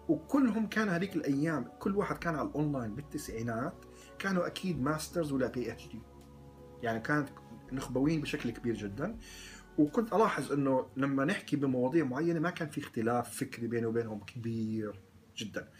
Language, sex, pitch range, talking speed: Arabic, male, 115-155 Hz, 150 wpm